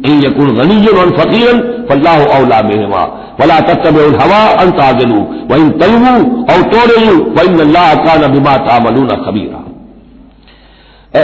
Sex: male